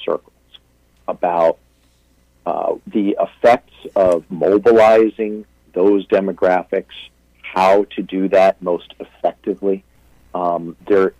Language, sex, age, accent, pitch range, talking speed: English, male, 50-69, American, 85-110 Hz, 90 wpm